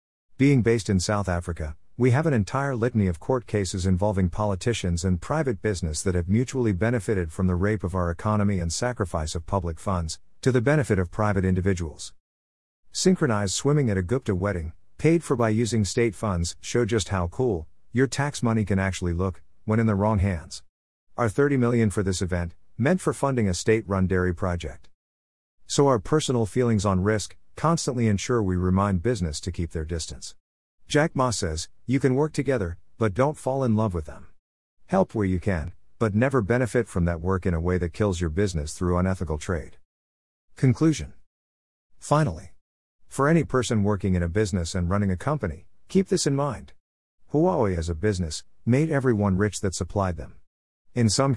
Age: 50-69